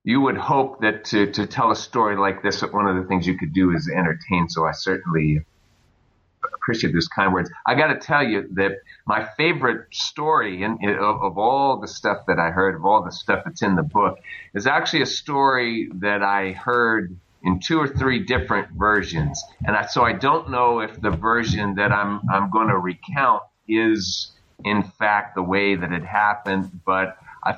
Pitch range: 90-110 Hz